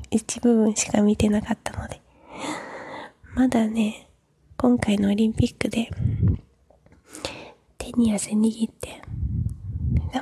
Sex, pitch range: female, 200-230 Hz